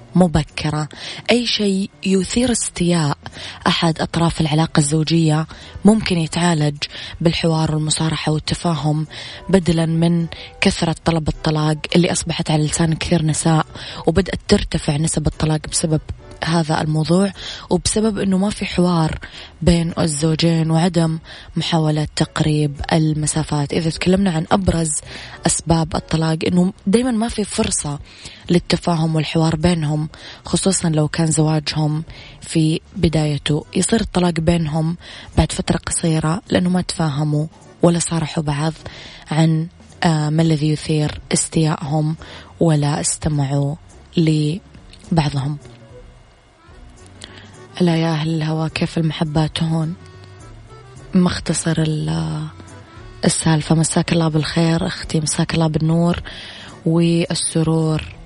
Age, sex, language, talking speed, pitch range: 20-39, female, Arabic, 105 wpm, 155-170 Hz